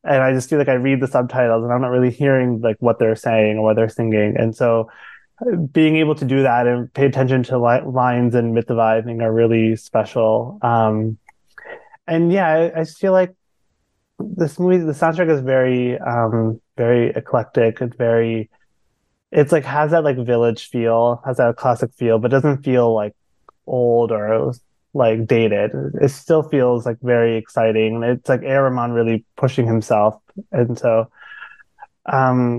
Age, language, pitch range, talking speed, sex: 20-39, English, 115-140 Hz, 180 wpm, male